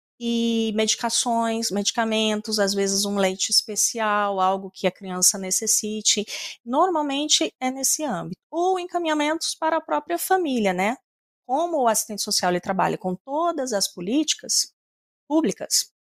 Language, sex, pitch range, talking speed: Portuguese, female, 195-260 Hz, 130 wpm